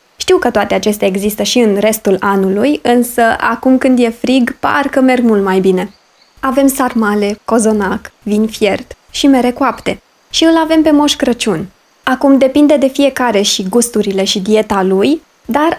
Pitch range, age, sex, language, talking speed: 205-270 Hz, 20-39, female, Romanian, 165 wpm